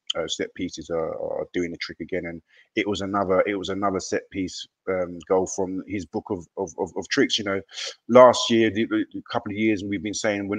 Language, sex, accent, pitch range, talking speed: English, male, British, 95-120 Hz, 230 wpm